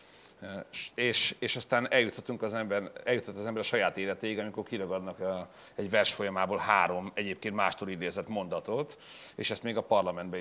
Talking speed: 150 wpm